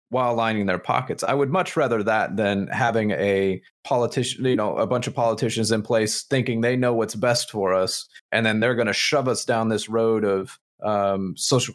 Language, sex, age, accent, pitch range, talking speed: English, male, 30-49, American, 105-125 Hz, 205 wpm